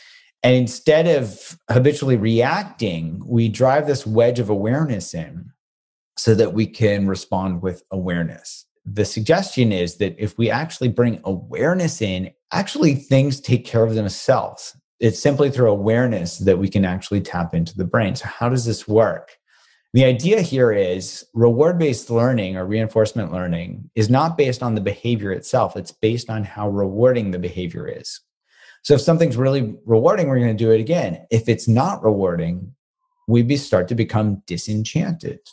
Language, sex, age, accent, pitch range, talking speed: English, male, 30-49, American, 100-130 Hz, 160 wpm